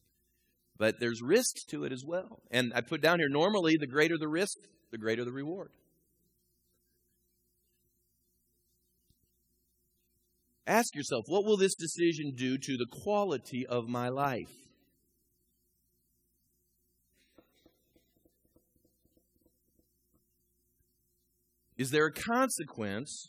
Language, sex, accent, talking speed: English, male, American, 100 wpm